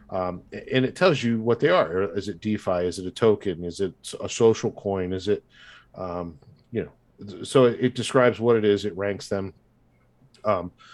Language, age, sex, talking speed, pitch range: English, 40-59, male, 190 wpm, 95-115 Hz